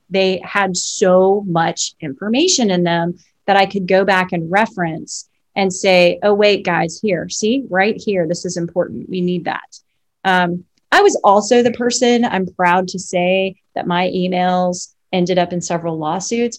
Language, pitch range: English, 175-205 Hz